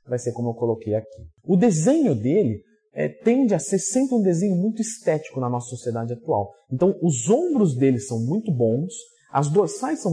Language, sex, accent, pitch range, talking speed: Portuguese, male, Brazilian, 150-210 Hz, 185 wpm